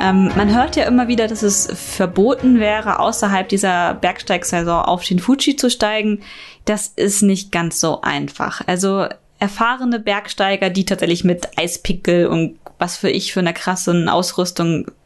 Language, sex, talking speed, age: German, female, 150 wpm, 20-39